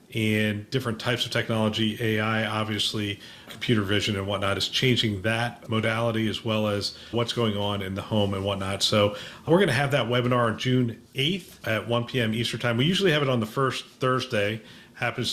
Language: English